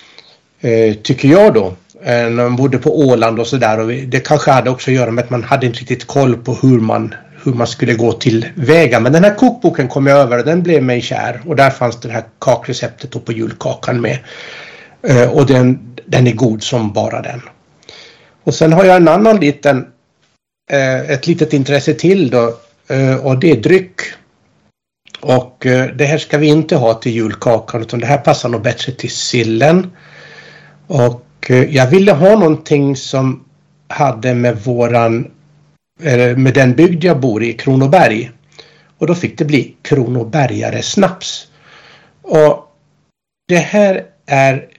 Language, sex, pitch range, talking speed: Swedish, male, 120-155 Hz, 165 wpm